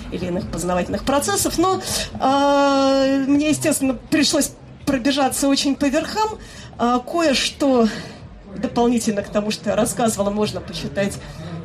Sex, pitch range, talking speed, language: female, 190-260 Hz, 110 wpm, Russian